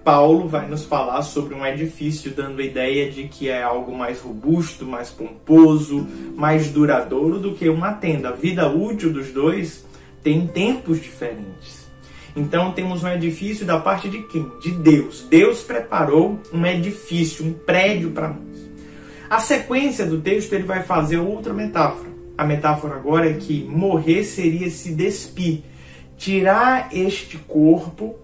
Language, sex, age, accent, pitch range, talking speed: Portuguese, male, 20-39, Brazilian, 145-190 Hz, 150 wpm